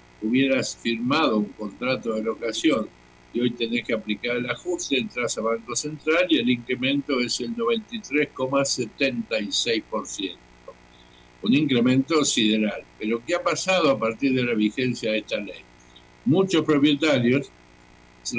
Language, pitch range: Spanish, 110-140 Hz